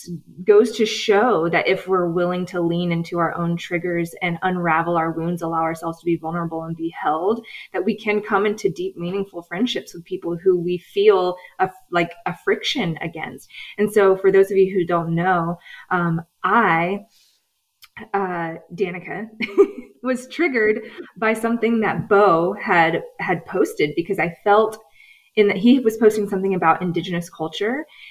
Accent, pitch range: American, 170-210 Hz